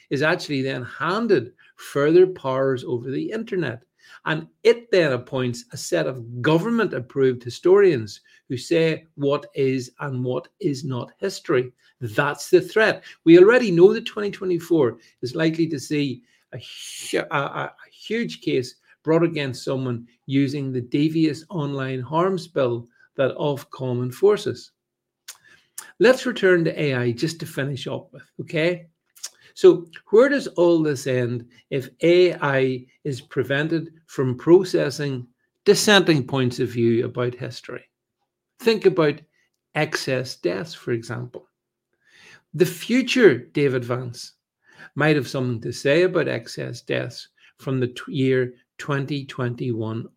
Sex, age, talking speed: male, 50-69, 130 wpm